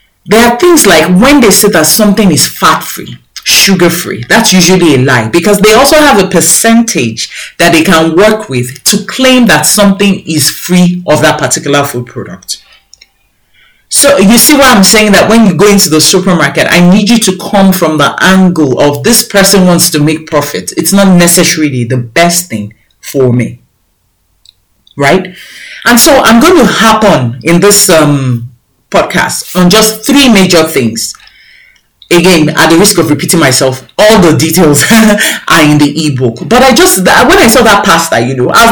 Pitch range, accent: 150-215 Hz, Nigerian